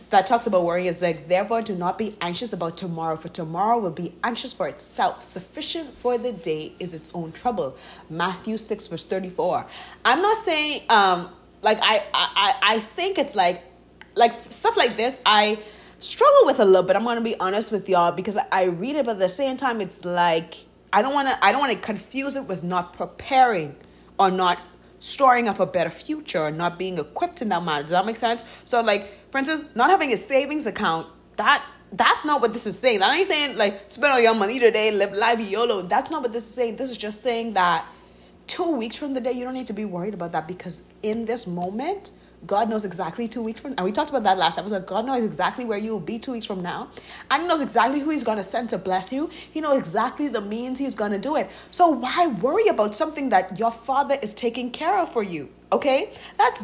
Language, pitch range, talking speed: English, 185-270 Hz, 230 wpm